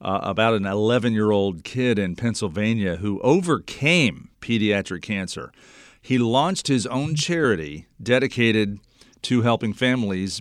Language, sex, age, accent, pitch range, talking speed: English, male, 50-69, American, 100-120 Hz, 115 wpm